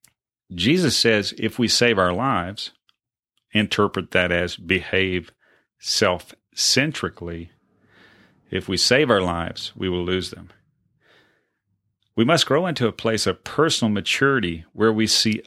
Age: 40-59